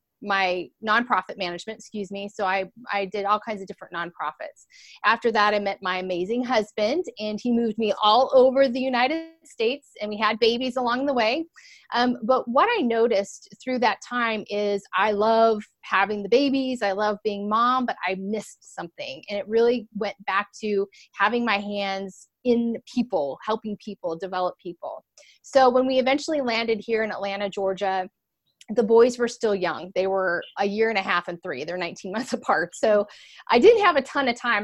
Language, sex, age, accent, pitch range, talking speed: English, female, 30-49, American, 200-255 Hz, 190 wpm